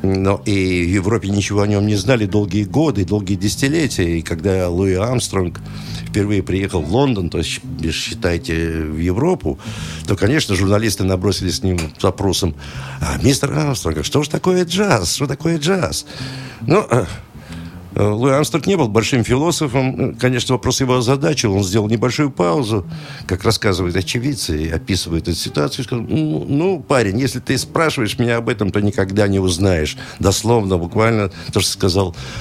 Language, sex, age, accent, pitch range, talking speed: Russian, male, 60-79, native, 95-135 Hz, 160 wpm